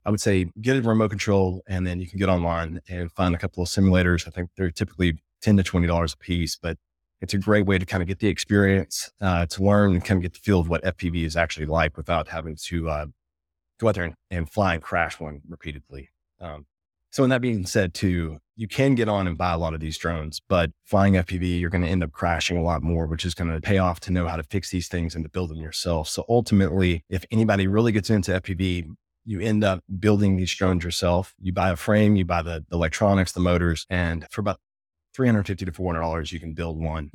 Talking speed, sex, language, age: 240 wpm, male, English, 30-49